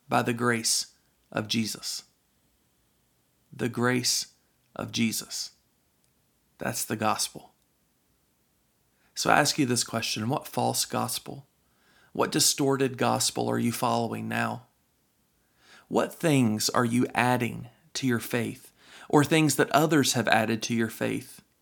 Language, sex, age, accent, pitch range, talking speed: English, male, 40-59, American, 110-135 Hz, 125 wpm